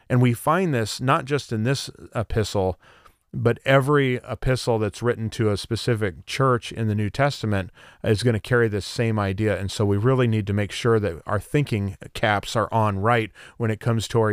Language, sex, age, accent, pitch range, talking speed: English, male, 40-59, American, 100-125 Hz, 205 wpm